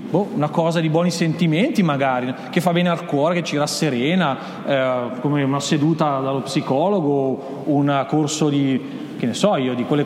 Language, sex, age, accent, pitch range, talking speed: Italian, male, 40-59, native, 145-220 Hz, 175 wpm